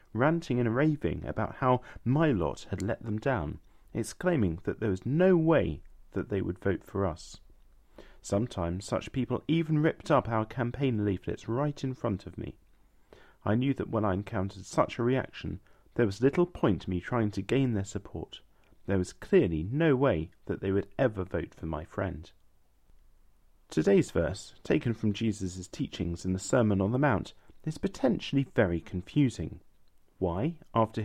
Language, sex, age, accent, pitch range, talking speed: English, male, 40-59, British, 95-130 Hz, 170 wpm